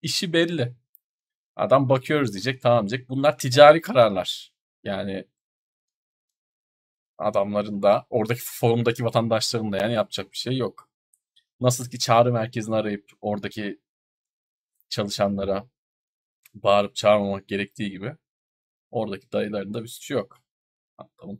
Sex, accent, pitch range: male, native, 115-170 Hz